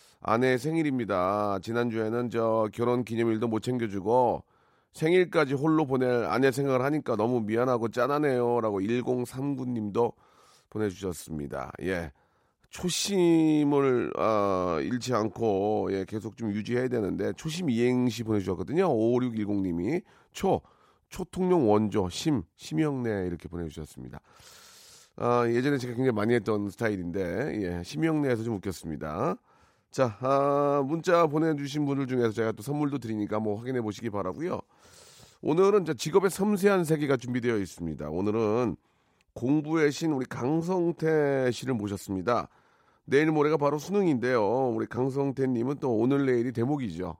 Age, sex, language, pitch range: 40-59, male, Korean, 105-145 Hz